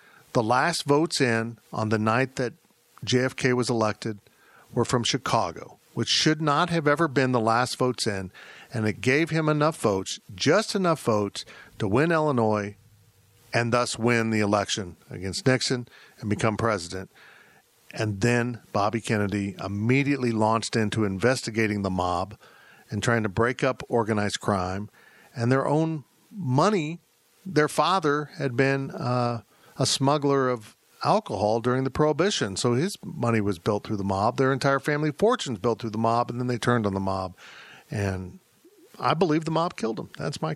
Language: English